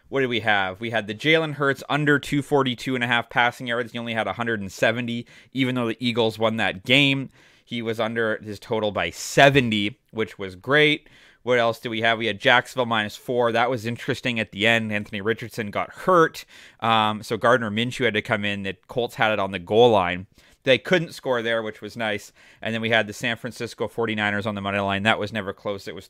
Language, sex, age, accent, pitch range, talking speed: English, male, 30-49, American, 110-130 Hz, 225 wpm